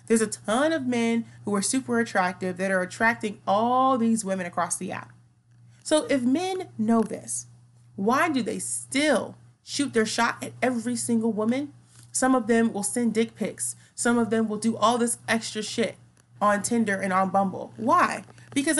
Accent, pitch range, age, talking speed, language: American, 190-280 Hz, 30-49, 180 wpm, English